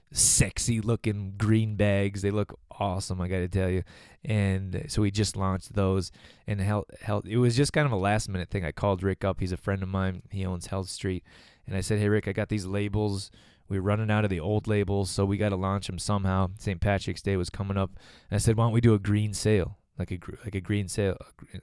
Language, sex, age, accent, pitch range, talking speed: English, male, 20-39, American, 95-105 Hz, 245 wpm